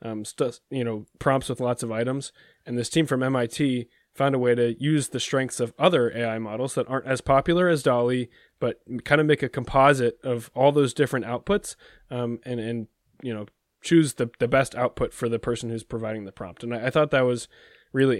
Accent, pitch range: American, 115-130 Hz